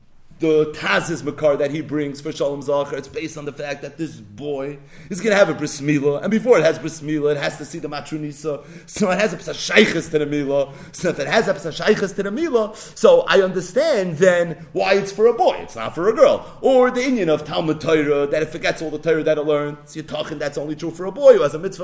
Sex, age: male, 30-49